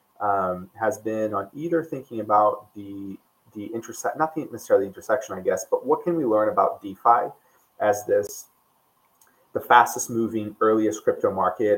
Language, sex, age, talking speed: English, male, 20-39, 165 wpm